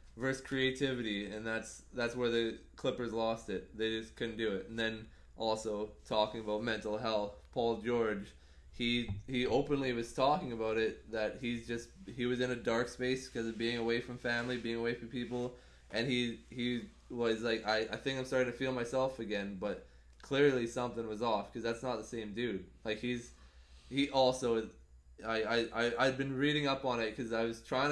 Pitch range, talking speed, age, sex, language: 115-130 Hz, 200 wpm, 20-39, male, English